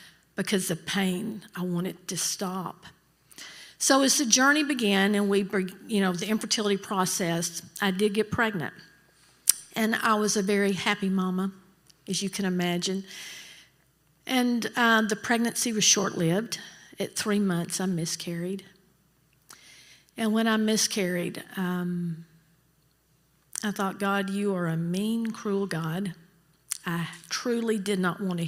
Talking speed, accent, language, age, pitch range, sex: 140 wpm, American, English, 50-69, 175-205 Hz, female